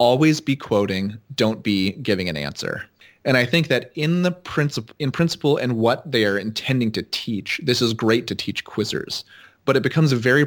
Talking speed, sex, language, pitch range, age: 195 wpm, male, English, 105-135 Hz, 30-49